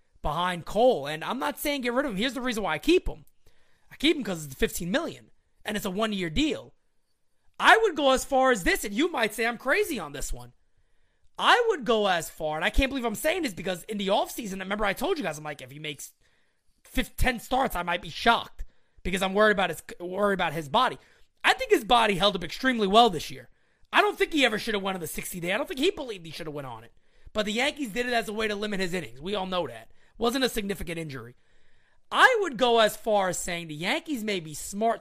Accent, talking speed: American, 255 wpm